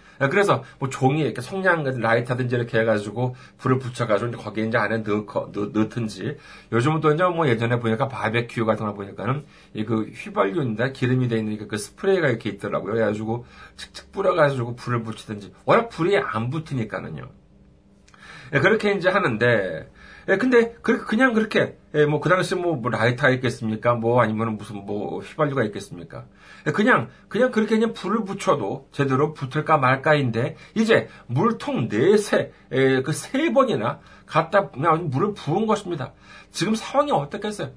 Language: Korean